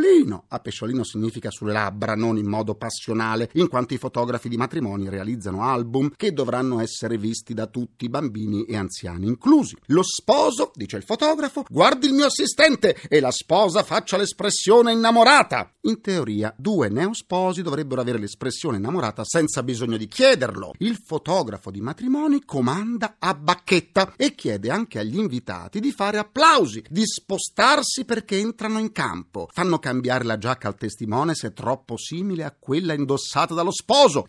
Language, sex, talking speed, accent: Italian, male, 160 wpm, native